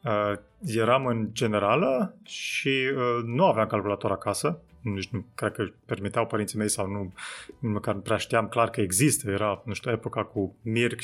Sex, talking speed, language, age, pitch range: male, 175 wpm, Romanian, 30-49, 115-165 Hz